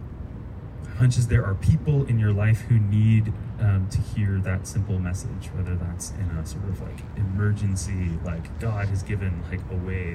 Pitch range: 95-110 Hz